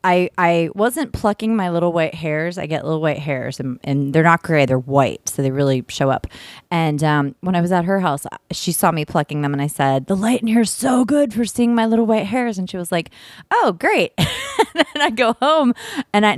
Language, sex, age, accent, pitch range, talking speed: English, female, 20-39, American, 145-195 Hz, 245 wpm